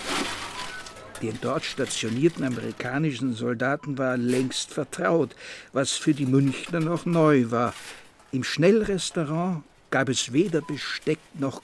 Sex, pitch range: male, 125-155 Hz